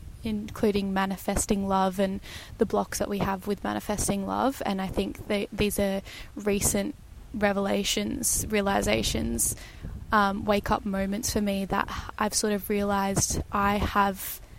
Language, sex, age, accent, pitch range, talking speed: English, female, 20-39, Australian, 195-215 Hz, 135 wpm